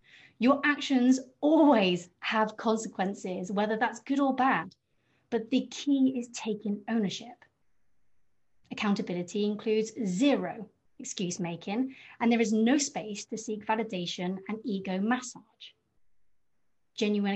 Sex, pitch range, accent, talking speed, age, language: female, 200-260 Hz, British, 115 wpm, 30-49, English